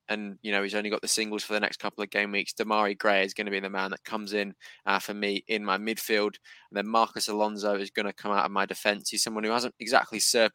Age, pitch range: 20-39, 100-110 Hz